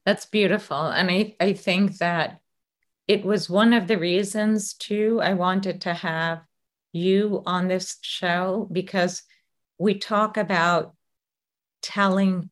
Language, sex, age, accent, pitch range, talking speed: English, female, 40-59, American, 165-190 Hz, 130 wpm